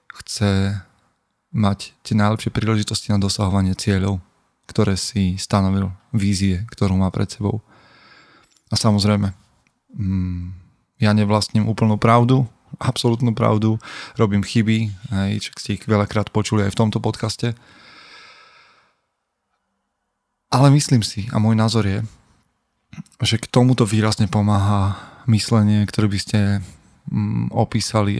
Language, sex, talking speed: Slovak, male, 110 wpm